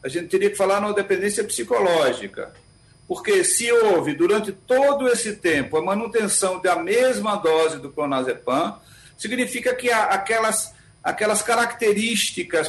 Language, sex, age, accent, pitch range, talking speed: Portuguese, male, 60-79, Brazilian, 175-240 Hz, 130 wpm